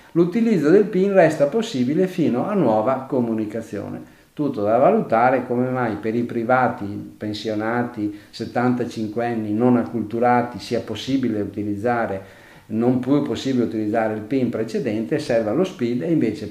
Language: Italian